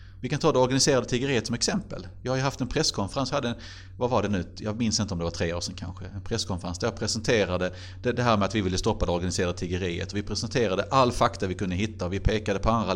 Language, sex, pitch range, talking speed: English, male, 95-120 Hz, 260 wpm